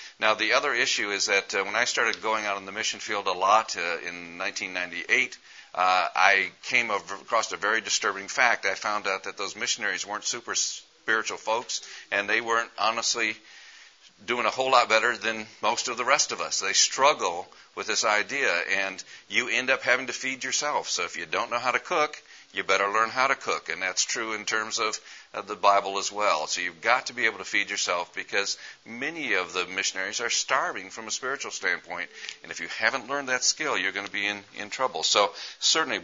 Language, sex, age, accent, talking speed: English, male, 50-69, American, 215 wpm